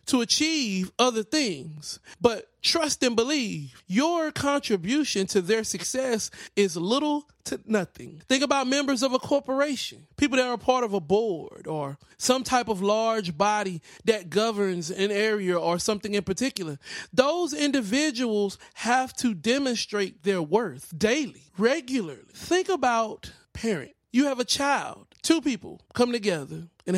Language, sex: English, male